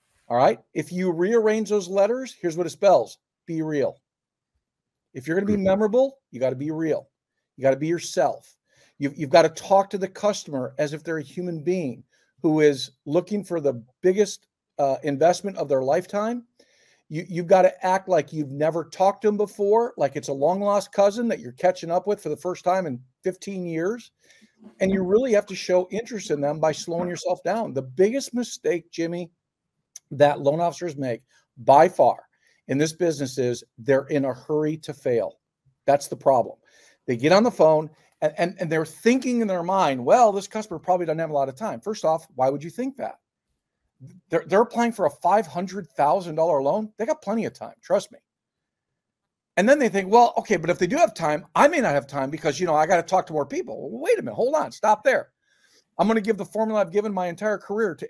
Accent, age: American, 50-69